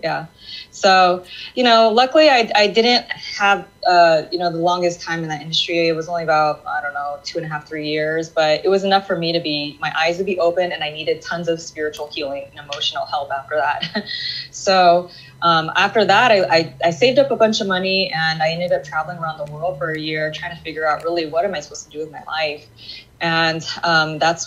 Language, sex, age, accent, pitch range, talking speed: English, female, 20-39, American, 155-185 Hz, 240 wpm